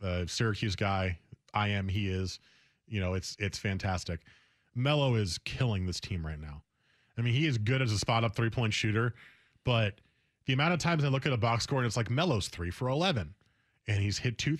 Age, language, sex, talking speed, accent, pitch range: 30-49, English, male, 210 wpm, American, 105-135 Hz